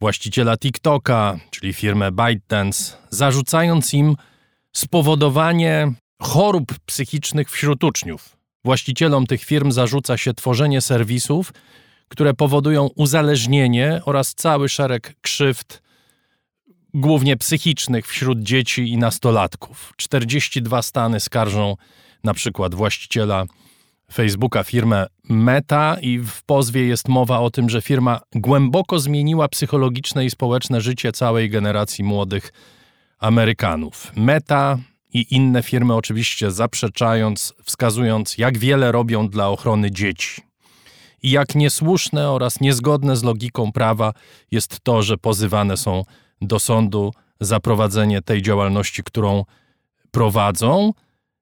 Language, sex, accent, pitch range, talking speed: Polish, male, native, 110-140 Hz, 110 wpm